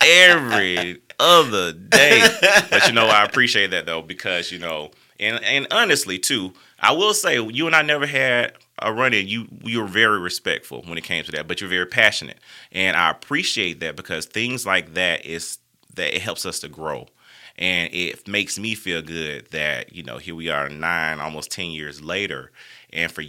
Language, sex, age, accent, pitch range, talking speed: English, male, 30-49, American, 75-95 Hz, 195 wpm